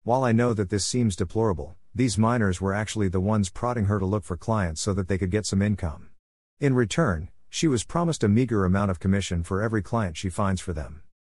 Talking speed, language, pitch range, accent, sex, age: 230 wpm, English, 90-115 Hz, American, male, 50-69